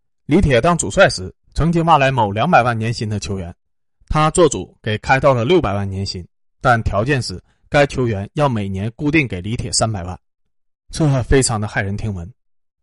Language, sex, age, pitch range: Chinese, male, 20-39, 100-140 Hz